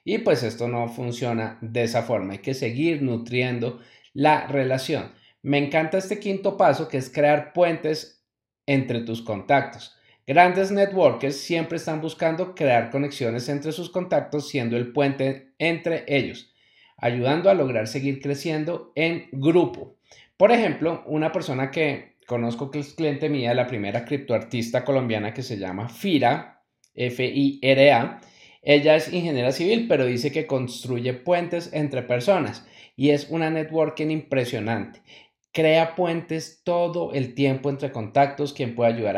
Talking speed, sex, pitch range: 140 wpm, male, 120-155 Hz